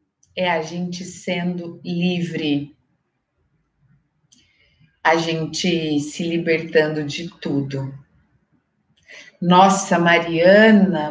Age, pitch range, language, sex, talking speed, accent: 40-59, 175-230 Hz, Portuguese, female, 70 wpm, Brazilian